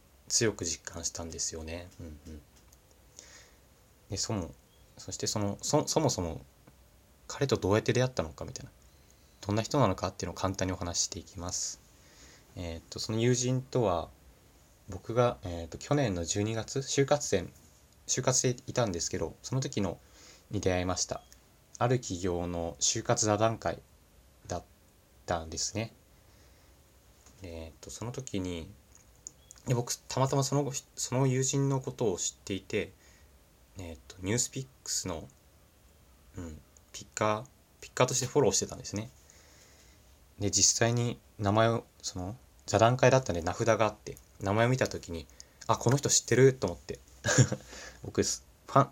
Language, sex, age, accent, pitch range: Japanese, male, 20-39, native, 85-115 Hz